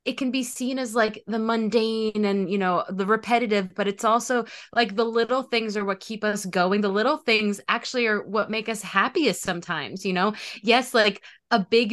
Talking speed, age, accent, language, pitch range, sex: 205 wpm, 20-39, American, English, 195-230 Hz, female